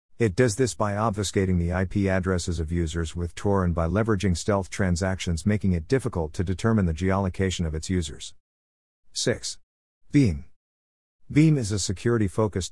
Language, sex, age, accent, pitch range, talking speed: English, male, 50-69, American, 85-110 Hz, 155 wpm